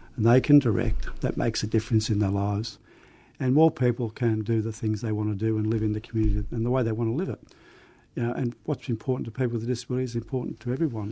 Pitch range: 110-130 Hz